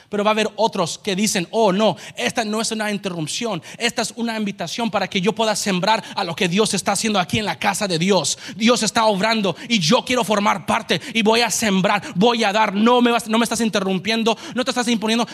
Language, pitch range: English, 205-260 Hz